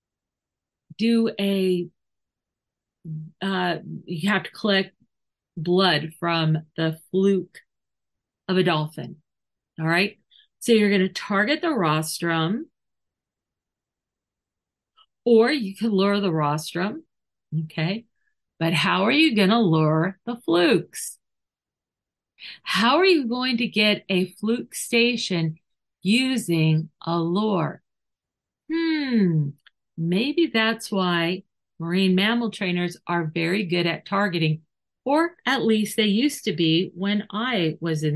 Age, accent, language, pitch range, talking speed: 50-69, American, English, 170-235 Hz, 115 wpm